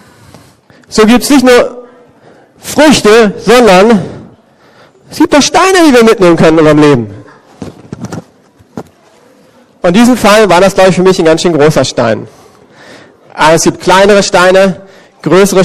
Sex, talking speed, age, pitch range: male, 150 wpm, 40-59, 160-205 Hz